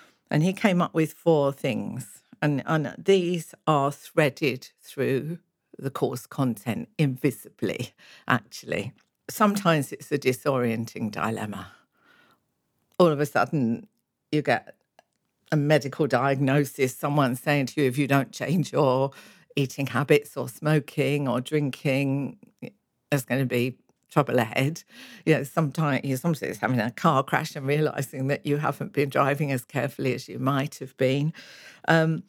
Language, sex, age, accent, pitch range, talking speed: English, female, 50-69, British, 140-185 Hz, 145 wpm